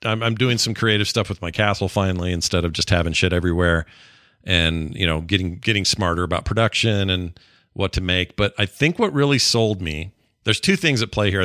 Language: English